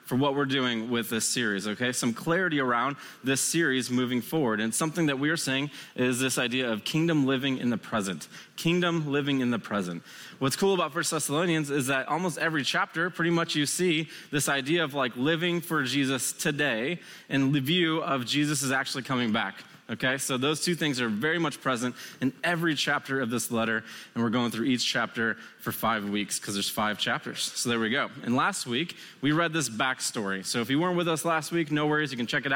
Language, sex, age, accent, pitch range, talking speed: English, male, 20-39, American, 130-160 Hz, 220 wpm